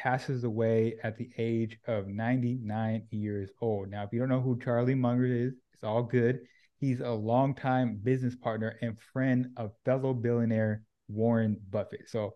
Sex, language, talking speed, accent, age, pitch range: male, English, 165 wpm, American, 20-39, 110-125 Hz